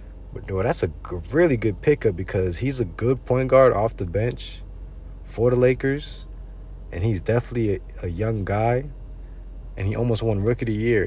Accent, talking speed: American, 185 wpm